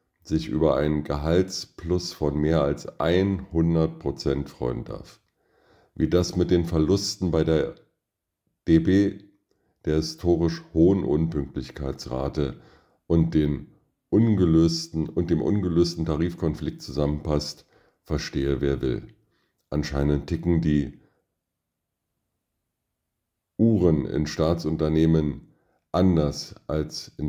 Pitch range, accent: 75-90 Hz, German